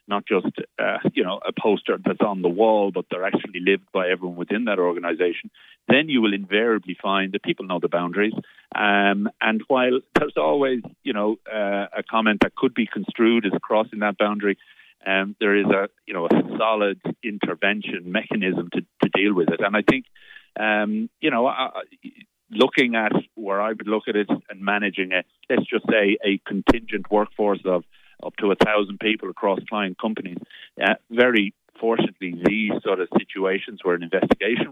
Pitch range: 95-110 Hz